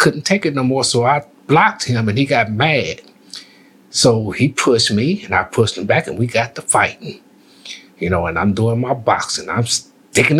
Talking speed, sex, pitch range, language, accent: 210 wpm, male, 120-165 Hz, English, American